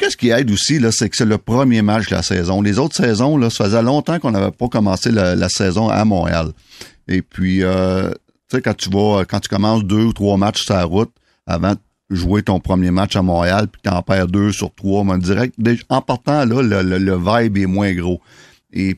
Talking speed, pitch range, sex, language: 235 wpm, 95-110 Hz, male, French